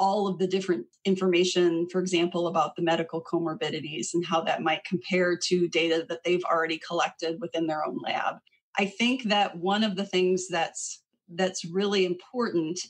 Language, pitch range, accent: English, 165-190 Hz, American